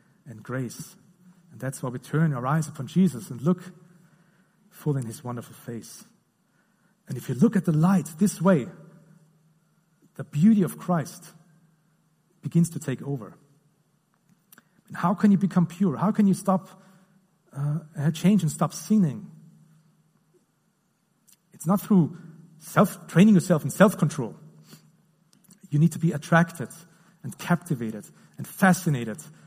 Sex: male